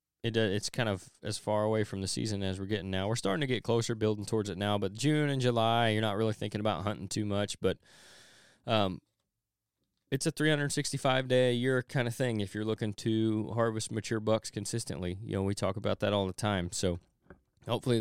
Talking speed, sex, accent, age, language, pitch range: 220 wpm, male, American, 20-39, English, 100-115 Hz